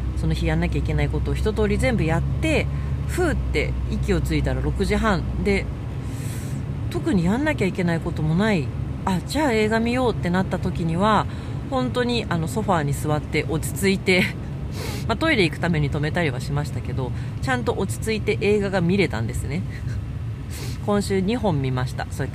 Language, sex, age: Japanese, female, 40-59